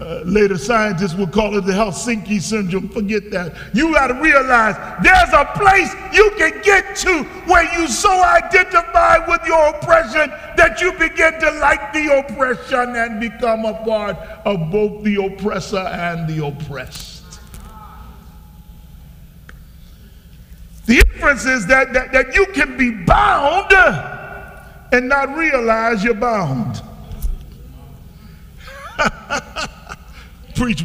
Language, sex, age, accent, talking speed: English, male, 50-69, American, 125 wpm